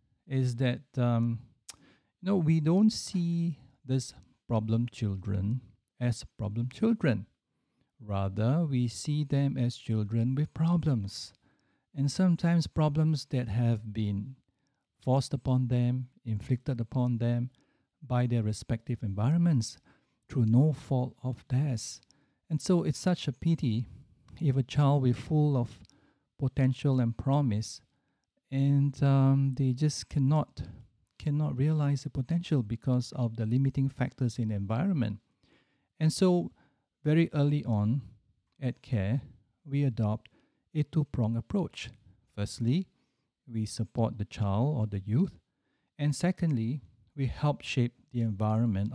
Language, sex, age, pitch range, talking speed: English, male, 50-69, 115-145 Hz, 125 wpm